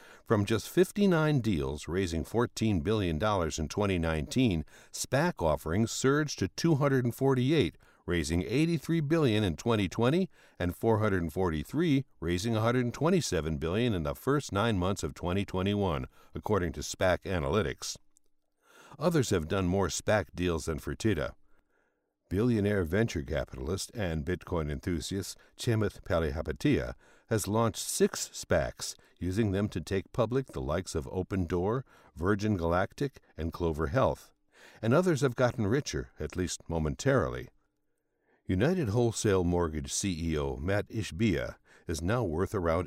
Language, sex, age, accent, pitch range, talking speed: English, male, 60-79, American, 85-115 Hz, 125 wpm